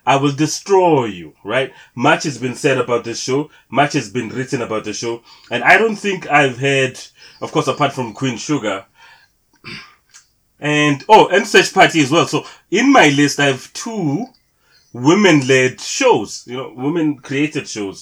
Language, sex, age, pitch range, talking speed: English, male, 30-49, 115-140 Hz, 175 wpm